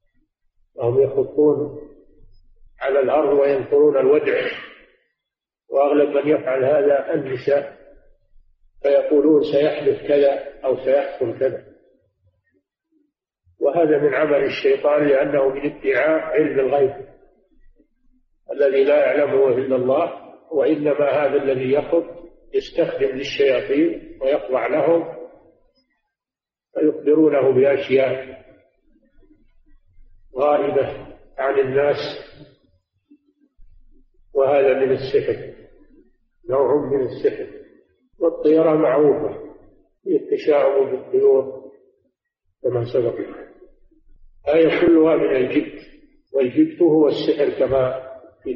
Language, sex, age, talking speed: Arabic, male, 50-69, 80 wpm